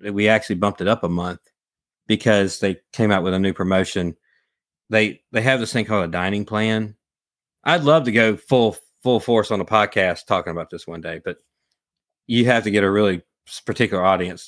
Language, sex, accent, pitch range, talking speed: English, male, American, 100-125 Hz, 200 wpm